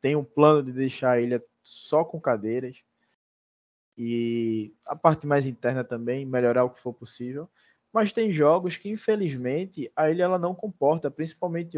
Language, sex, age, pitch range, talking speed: Portuguese, male, 20-39, 125-160 Hz, 165 wpm